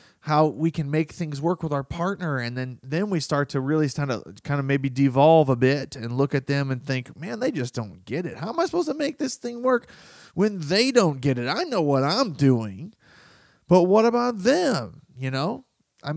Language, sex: English, male